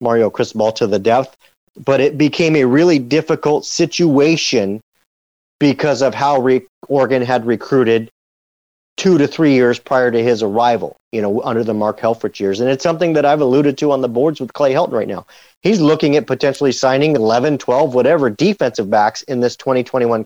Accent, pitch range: American, 125-160 Hz